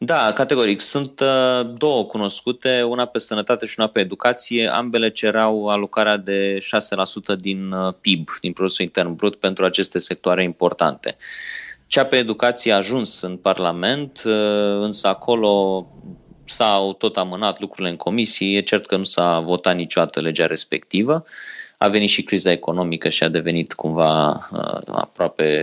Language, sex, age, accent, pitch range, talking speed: Romanian, male, 20-39, native, 90-105 Hz, 145 wpm